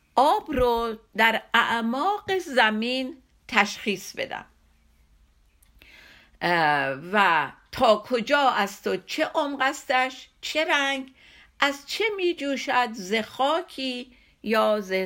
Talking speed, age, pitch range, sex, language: 90 wpm, 50-69, 195-255 Hz, female, Persian